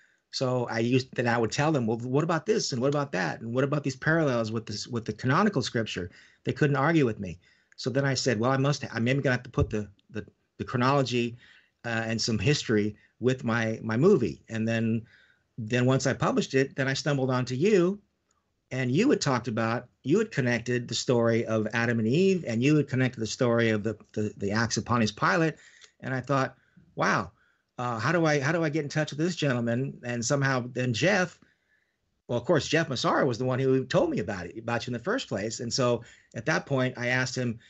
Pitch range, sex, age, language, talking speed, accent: 115-135 Hz, male, 40-59, English, 230 wpm, American